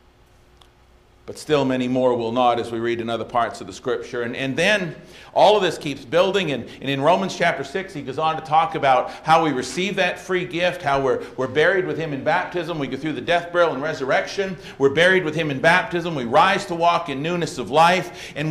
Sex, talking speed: male, 235 wpm